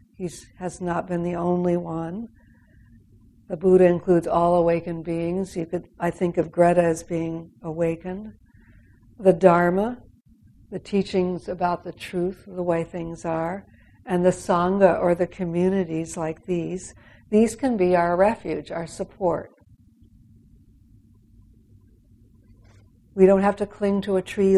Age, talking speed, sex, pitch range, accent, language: 60-79, 130 wpm, female, 115-185 Hz, American, English